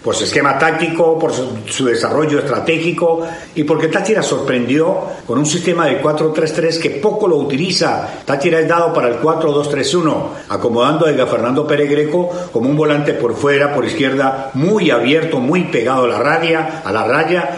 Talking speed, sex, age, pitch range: 175 wpm, male, 50-69, 135-170 Hz